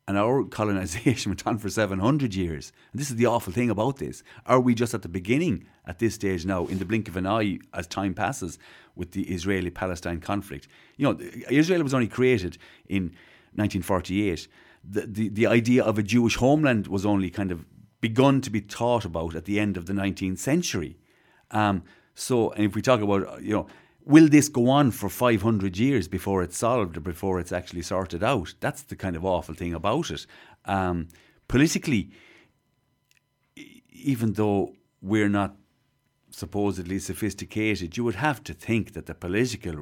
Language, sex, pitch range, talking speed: English, male, 90-115 Hz, 180 wpm